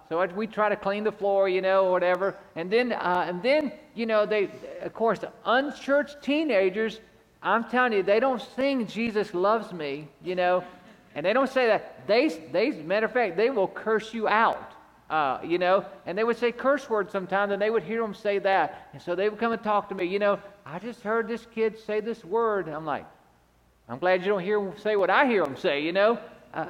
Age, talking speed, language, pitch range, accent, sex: 50-69, 235 wpm, English, 180-230 Hz, American, male